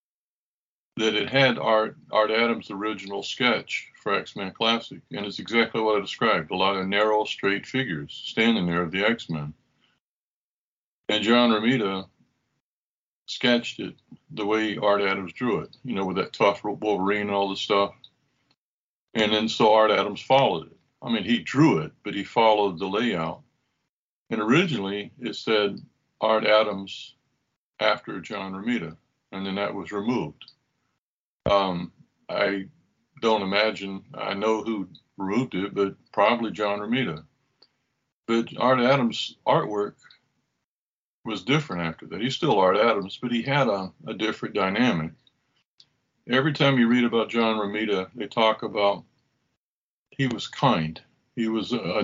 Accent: American